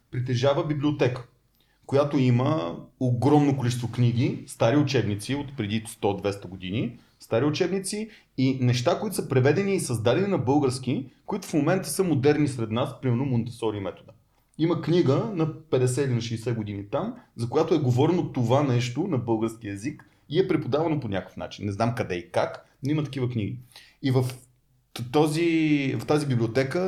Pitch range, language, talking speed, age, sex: 120-150 Hz, Bulgarian, 155 wpm, 30-49, male